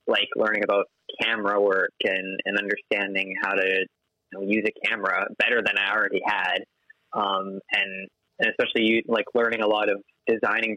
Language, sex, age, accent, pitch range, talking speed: English, male, 20-39, American, 100-115 Hz, 155 wpm